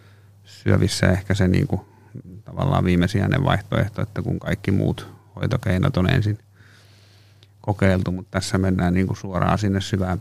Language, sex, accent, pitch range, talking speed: Finnish, male, native, 90-100 Hz, 140 wpm